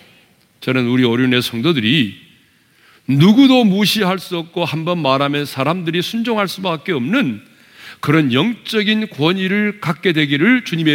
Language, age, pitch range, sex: Korean, 40-59, 140-200 Hz, male